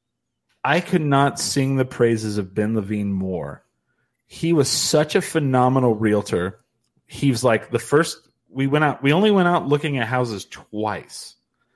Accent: American